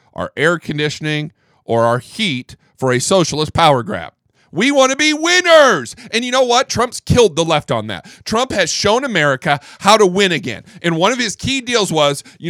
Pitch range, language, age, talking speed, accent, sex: 145-210 Hz, English, 40-59, 200 wpm, American, male